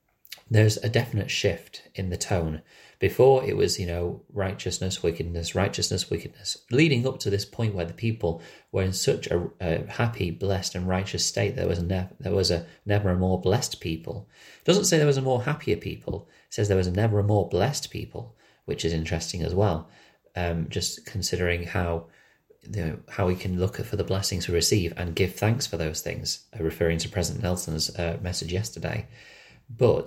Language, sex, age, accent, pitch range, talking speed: English, male, 30-49, British, 85-110 Hz, 200 wpm